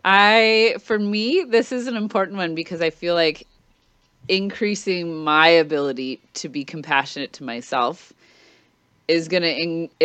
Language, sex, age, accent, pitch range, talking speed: English, female, 30-49, American, 150-185 Hz, 135 wpm